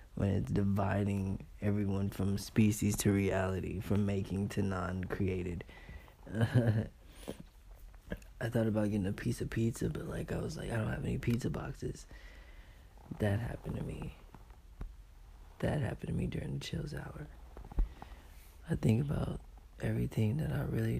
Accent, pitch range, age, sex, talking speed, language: American, 80-125 Hz, 20-39, male, 145 wpm, English